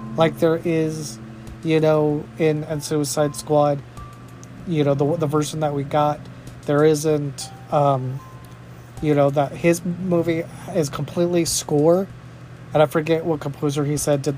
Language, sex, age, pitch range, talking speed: English, male, 30-49, 130-155 Hz, 150 wpm